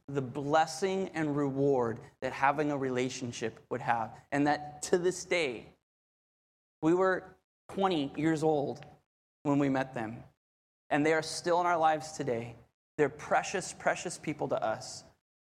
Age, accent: 20-39, American